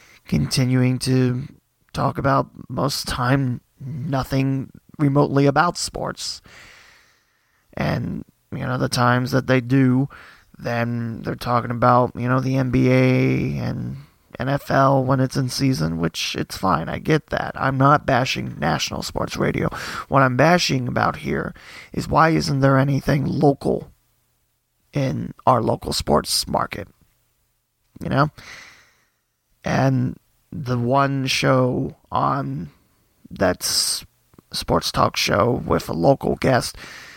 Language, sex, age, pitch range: English, male, 20-39, 125-140 Hz